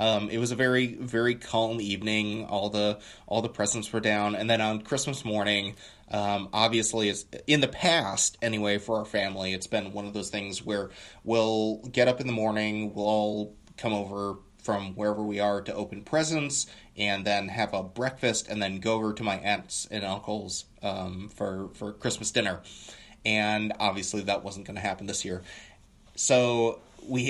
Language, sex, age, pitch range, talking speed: English, male, 20-39, 100-115 Hz, 185 wpm